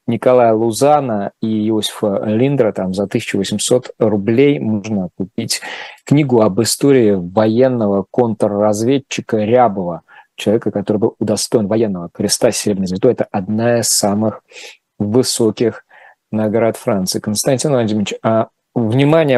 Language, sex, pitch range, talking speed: Russian, male, 105-130 Hz, 100 wpm